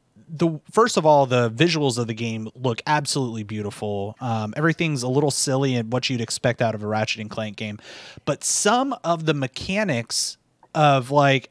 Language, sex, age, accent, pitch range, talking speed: English, male, 30-49, American, 125-165 Hz, 180 wpm